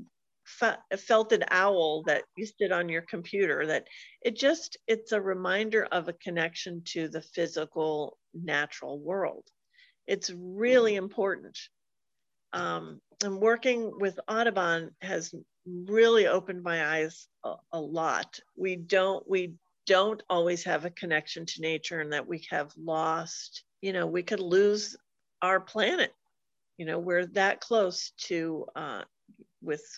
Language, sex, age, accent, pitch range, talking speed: English, female, 50-69, American, 175-225 Hz, 130 wpm